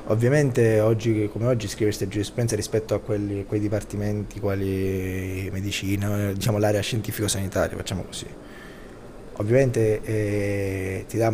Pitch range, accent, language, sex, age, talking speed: 100-115 Hz, native, Italian, male, 20-39, 125 wpm